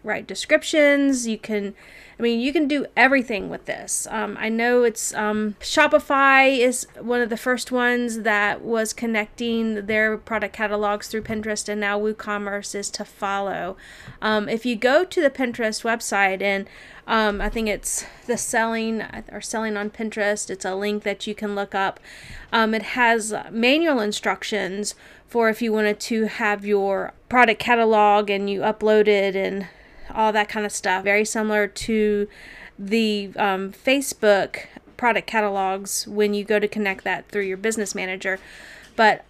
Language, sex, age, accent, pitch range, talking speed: English, female, 30-49, American, 205-230 Hz, 165 wpm